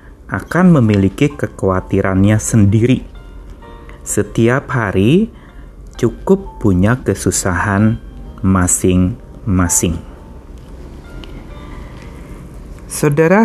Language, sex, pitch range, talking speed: Indonesian, male, 90-120 Hz, 50 wpm